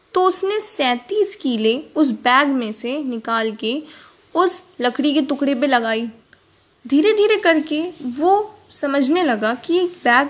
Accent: native